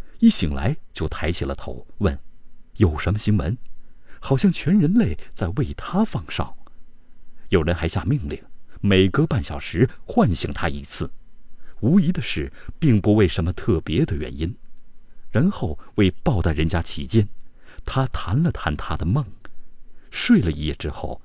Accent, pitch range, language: native, 80-120 Hz, Chinese